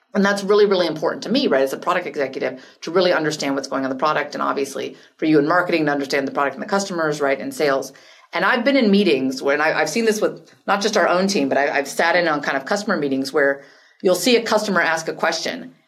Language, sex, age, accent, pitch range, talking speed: English, female, 30-49, American, 145-195 Hz, 265 wpm